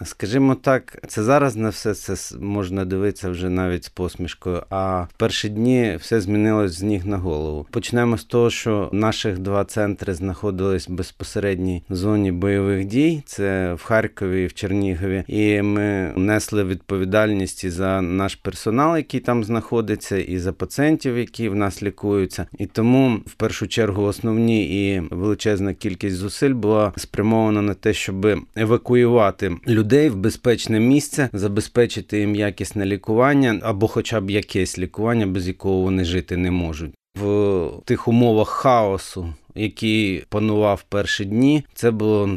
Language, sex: Ukrainian, male